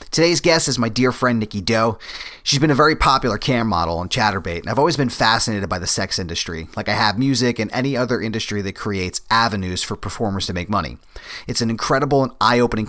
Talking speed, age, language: 220 wpm, 30-49, English